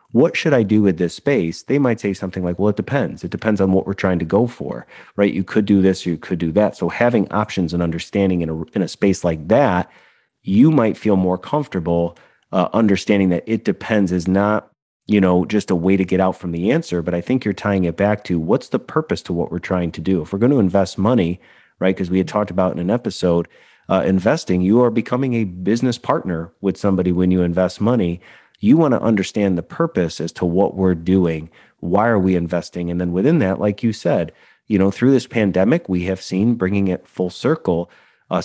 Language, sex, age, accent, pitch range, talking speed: English, male, 30-49, American, 90-105 Hz, 235 wpm